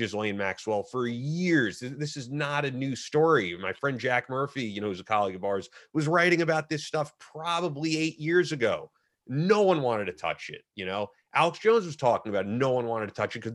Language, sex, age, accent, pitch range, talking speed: English, male, 30-49, American, 115-150 Hz, 230 wpm